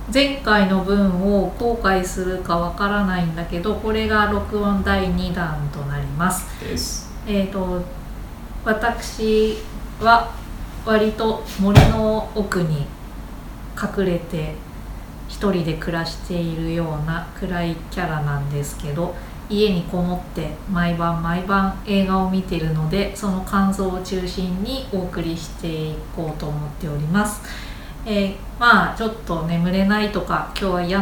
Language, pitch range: Japanese, 170-205 Hz